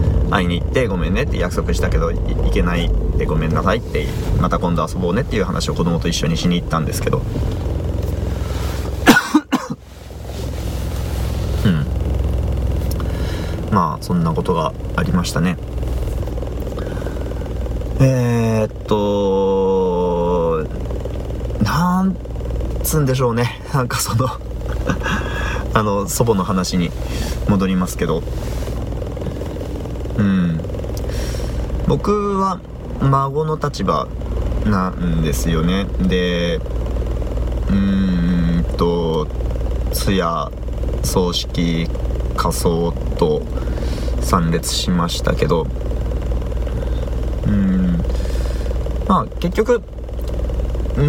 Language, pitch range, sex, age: Japanese, 65-95 Hz, male, 40-59